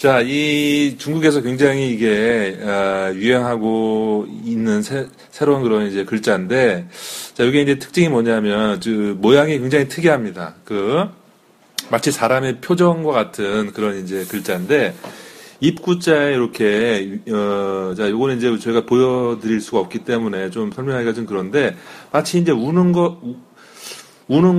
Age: 40-59